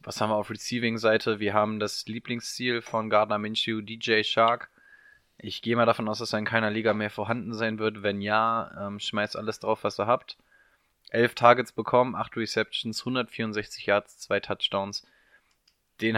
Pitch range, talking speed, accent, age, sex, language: 105-115 Hz, 170 wpm, German, 20-39, male, German